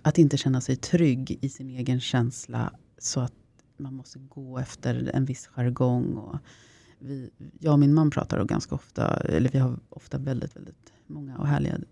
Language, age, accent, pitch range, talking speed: Swedish, 30-49, native, 125-160 Hz, 180 wpm